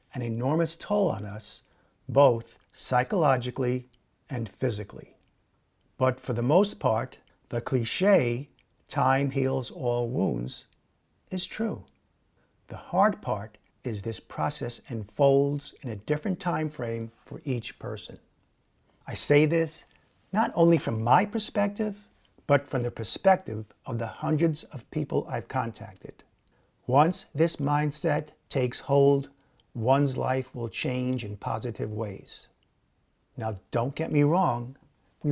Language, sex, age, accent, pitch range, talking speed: English, male, 50-69, American, 115-145 Hz, 125 wpm